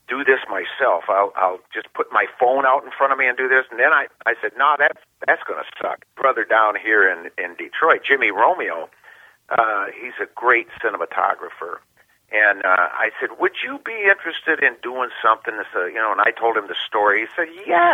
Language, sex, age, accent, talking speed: English, male, 50-69, American, 215 wpm